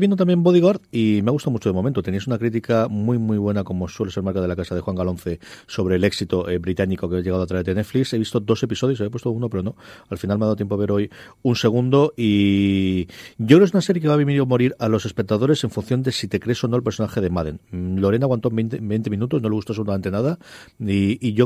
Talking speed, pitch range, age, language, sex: 275 wpm, 105-130 Hz, 40-59, Spanish, male